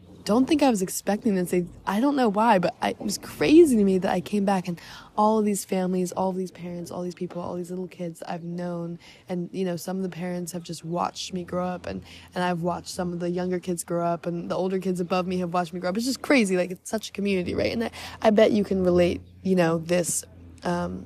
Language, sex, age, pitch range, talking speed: English, female, 20-39, 175-195 Hz, 270 wpm